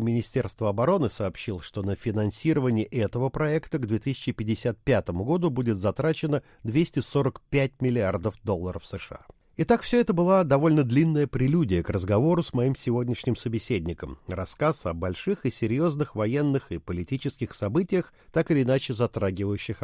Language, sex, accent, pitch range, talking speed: Russian, male, native, 105-150 Hz, 130 wpm